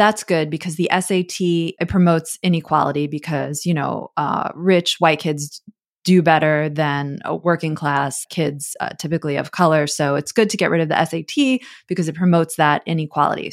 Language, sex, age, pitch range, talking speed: English, female, 20-39, 155-185 Hz, 175 wpm